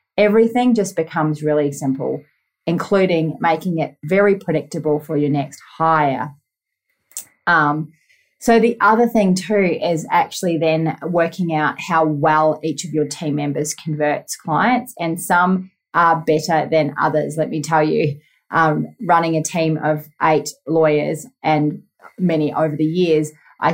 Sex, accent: female, Australian